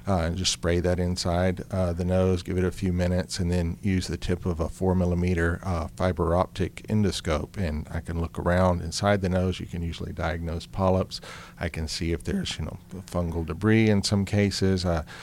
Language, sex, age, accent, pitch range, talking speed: English, male, 50-69, American, 85-90 Hz, 210 wpm